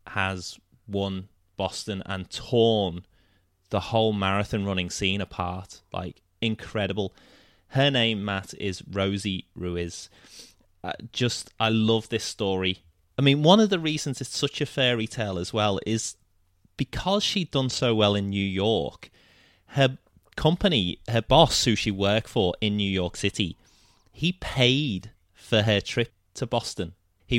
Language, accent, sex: English, British, male